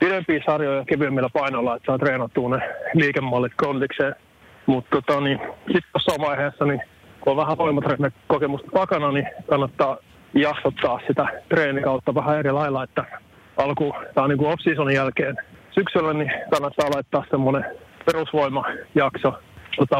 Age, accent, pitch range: 30-49, native, 135-155 Hz